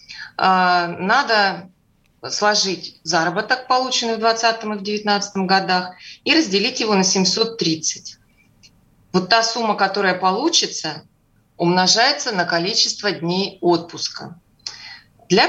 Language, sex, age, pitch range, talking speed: Russian, female, 30-49, 180-225 Hz, 100 wpm